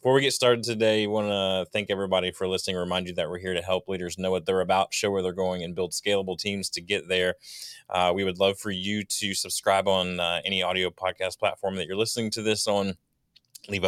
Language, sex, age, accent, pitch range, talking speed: English, male, 20-39, American, 90-115 Hz, 240 wpm